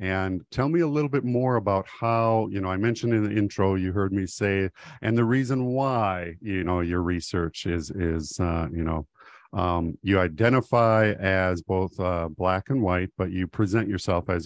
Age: 50-69